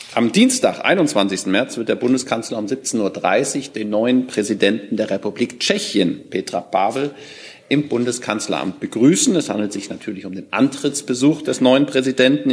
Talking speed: 150 wpm